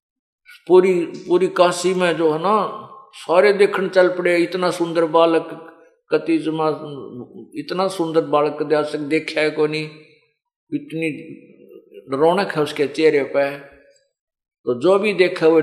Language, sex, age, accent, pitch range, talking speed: Hindi, male, 50-69, native, 150-205 Hz, 130 wpm